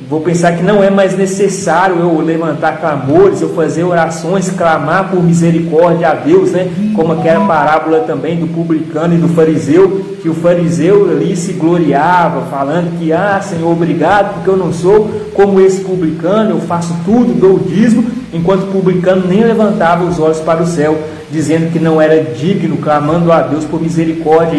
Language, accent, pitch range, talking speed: Portuguese, Brazilian, 160-190 Hz, 175 wpm